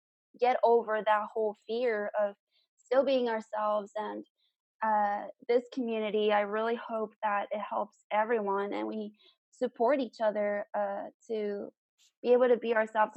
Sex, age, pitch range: female, 20-39, 205-240 Hz